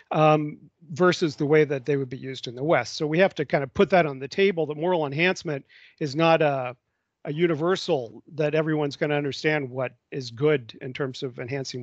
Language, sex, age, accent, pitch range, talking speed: English, male, 40-59, American, 135-170 Hz, 220 wpm